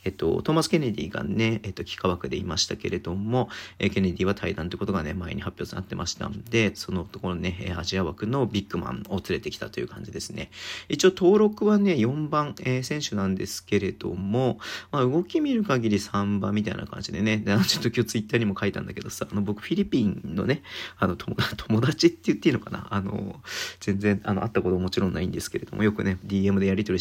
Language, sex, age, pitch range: Japanese, male, 40-59, 95-115 Hz